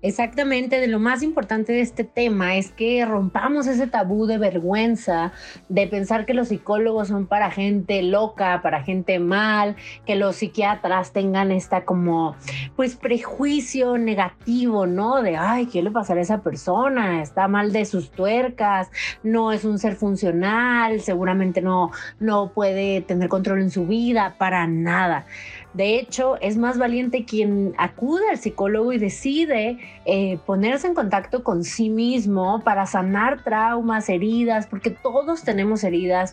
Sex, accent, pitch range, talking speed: female, Mexican, 190-235 Hz, 150 wpm